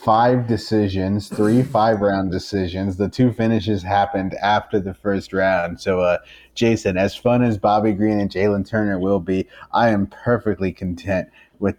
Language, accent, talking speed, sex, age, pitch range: English, American, 165 wpm, male, 30-49, 105-145 Hz